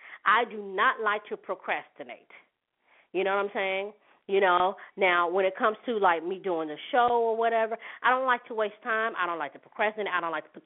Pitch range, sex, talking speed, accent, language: 170-230 Hz, female, 230 wpm, American, English